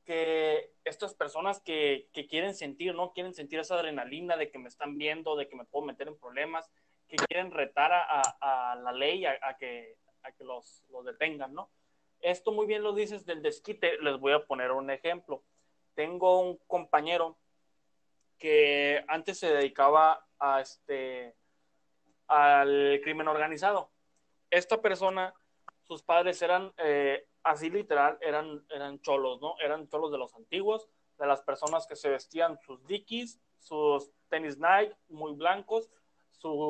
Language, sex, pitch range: Spanish, male, 140-180 Hz